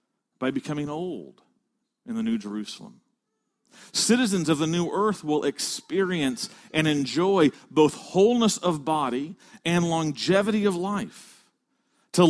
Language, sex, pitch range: English, male, 150-225 Hz